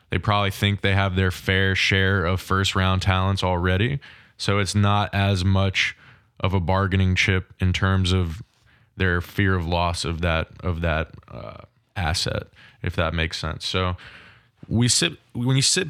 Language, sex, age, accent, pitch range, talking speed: English, male, 20-39, American, 95-110 Hz, 165 wpm